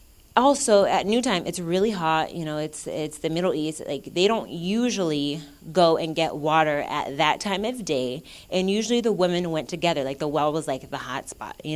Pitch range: 150-210 Hz